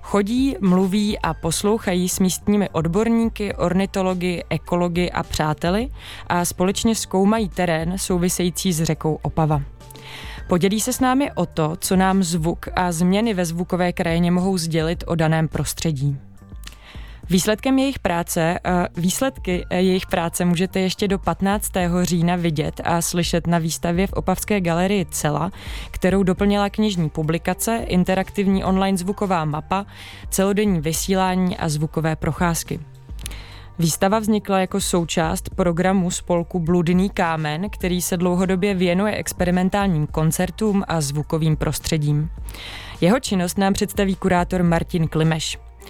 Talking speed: 125 wpm